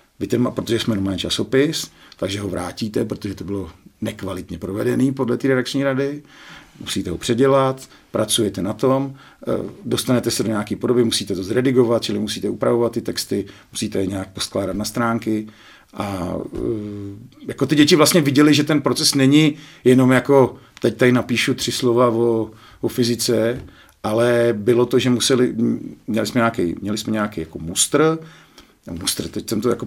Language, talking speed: Czech, 160 wpm